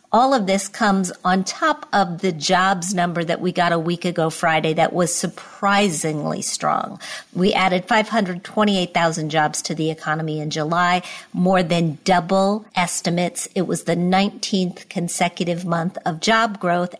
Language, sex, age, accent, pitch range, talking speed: English, female, 50-69, American, 175-215 Hz, 150 wpm